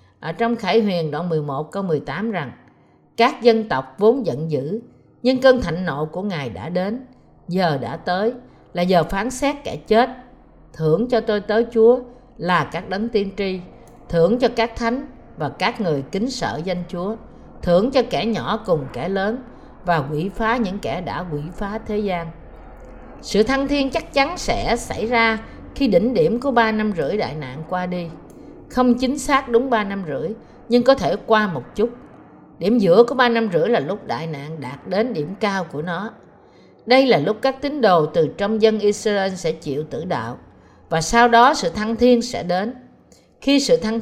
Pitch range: 175-235 Hz